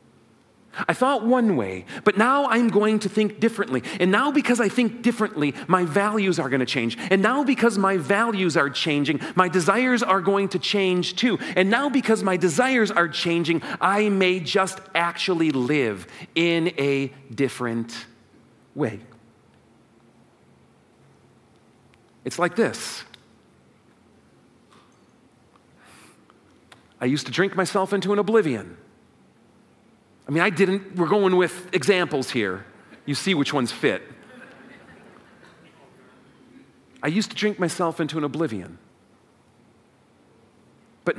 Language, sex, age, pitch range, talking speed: English, male, 40-59, 135-200 Hz, 125 wpm